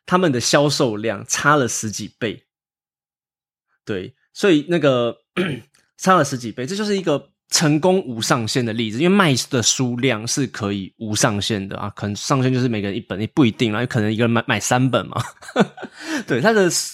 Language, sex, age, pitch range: Chinese, male, 20-39, 110-140 Hz